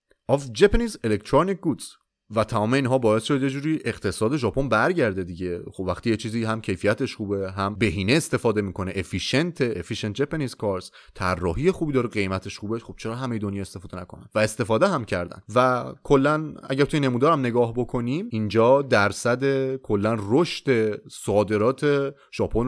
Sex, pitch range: male, 105-155 Hz